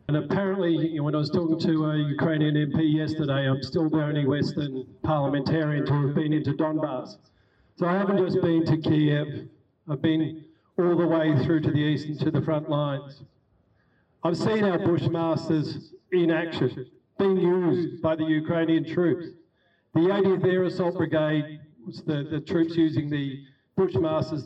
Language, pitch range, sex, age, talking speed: Ukrainian, 140-165 Hz, male, 50-69, 165 wpm